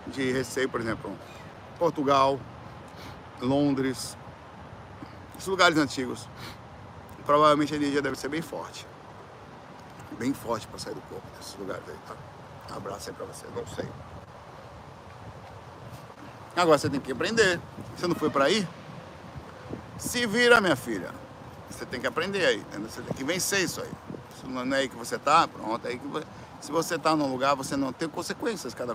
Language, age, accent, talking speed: Portuguese, 60-79, Brazilian, 170 wpm